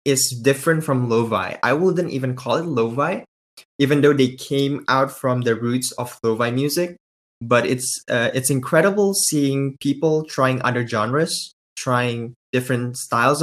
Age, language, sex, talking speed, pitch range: 20-39, English, male, 150 wpm, 120-140 Hz